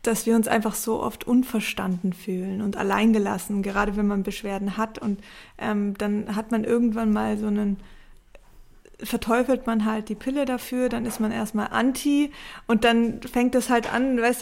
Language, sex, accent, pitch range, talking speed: German, female, German, 210-235 Hz, 180 wpm